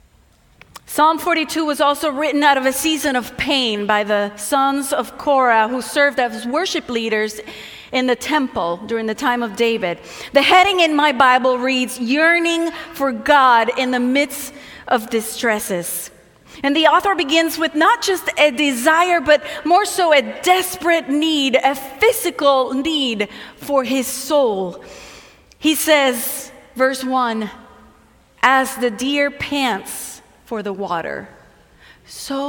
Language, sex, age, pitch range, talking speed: English, female, 30-49, 235-295 Hz, 140 wpm